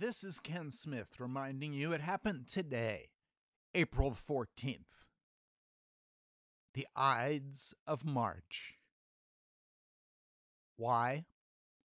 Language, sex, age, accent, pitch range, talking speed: English, male, 60-79, American, 110-155 Hz, 80 wpm